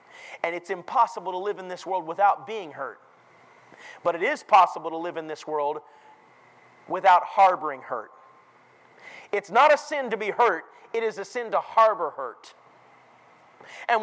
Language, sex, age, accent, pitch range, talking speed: English, male, 30-49, American, 220-295 Hz, 165 wpm